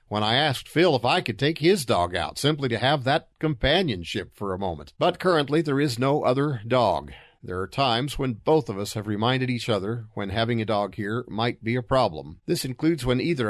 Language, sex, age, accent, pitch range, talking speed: English, male, 50-69, American, 105-135 Hz, 220 wpm